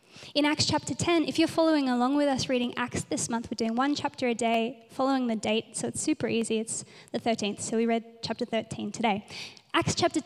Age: 20-39